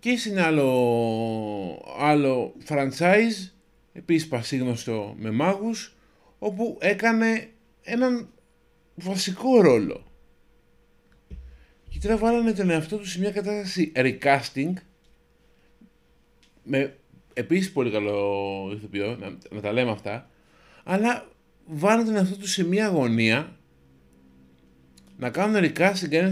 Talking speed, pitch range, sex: 105 wpm, 125-200 Hz, male